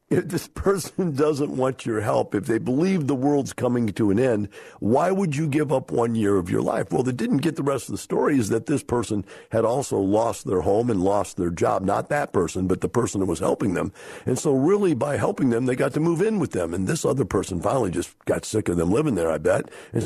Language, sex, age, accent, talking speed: English, male, 50-69, American, 255 wpm